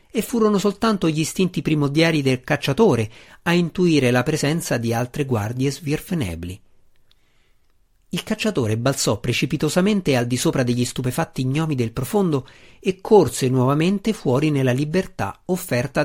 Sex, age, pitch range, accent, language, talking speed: male, 50-69, 120-170 Hz, native, Italian, 130 wpm